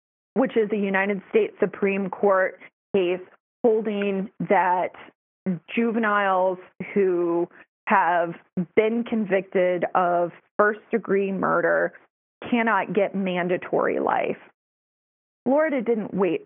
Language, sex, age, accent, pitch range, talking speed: English, female, 30-49, American, 190-230 Hz, 90 wpm